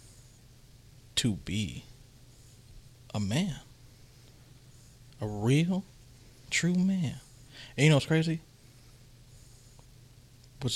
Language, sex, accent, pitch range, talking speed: English, male, American, 120-130 Hz, 80 wpm